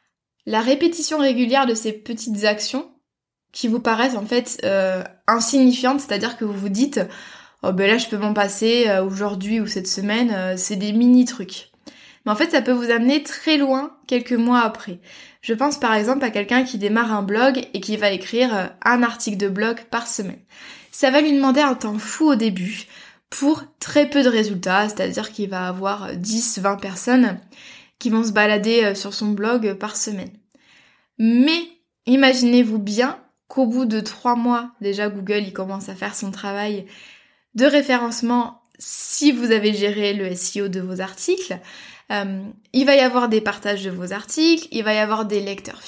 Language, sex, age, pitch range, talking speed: French, female, 20-39, 205-255 Hz, 180 wpm